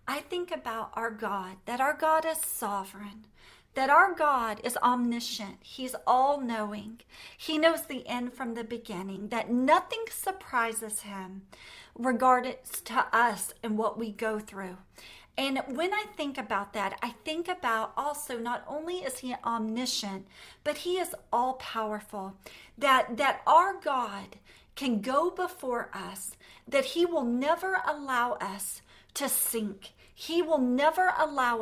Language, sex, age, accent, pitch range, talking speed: English, female, 40-59, American, 220-290 Hz, 140 wpm